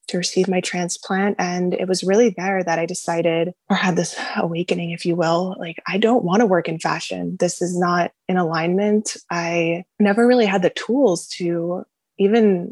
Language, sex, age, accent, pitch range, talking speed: English, female, 20-39, American, 175-200 Hz, 190 wpm